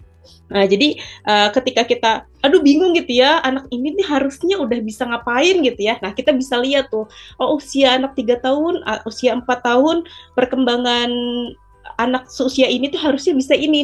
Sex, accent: female, native